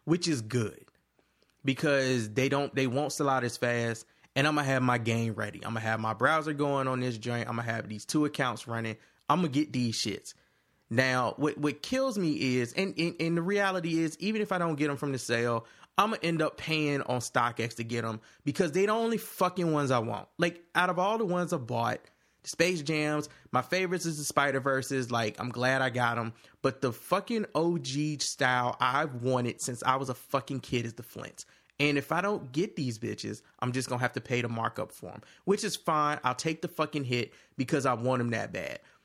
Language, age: English, 20-39